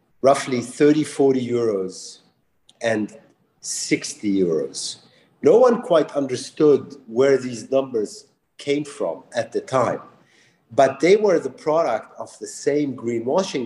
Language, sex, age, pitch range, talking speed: English, male, 50-69, 120-155 Hz, 125 wpm